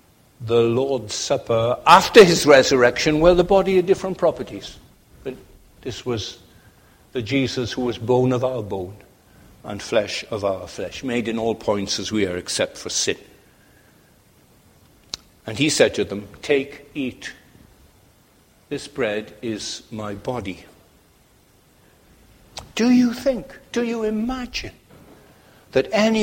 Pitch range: 110-160 Hz